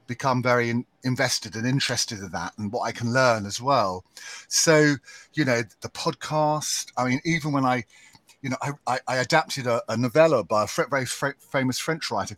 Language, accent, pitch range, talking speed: English, British, 110-145 Hz, 190 wpm